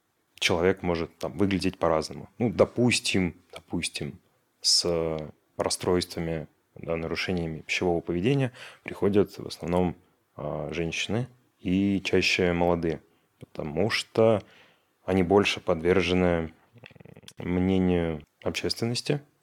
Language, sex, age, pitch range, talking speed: Russian, male, 30-49, 85-105 Hz, 85 wpm